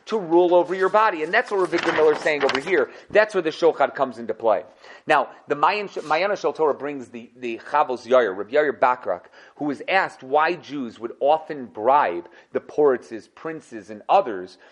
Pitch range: 160-260 Hz